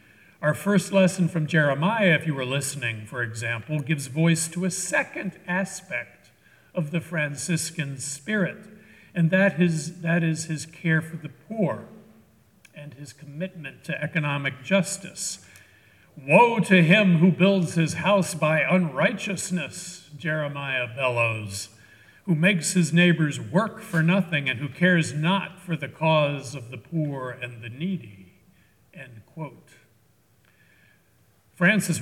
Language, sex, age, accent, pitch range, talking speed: English, male, 60-79, American, 135-180 Hz, 130 wpm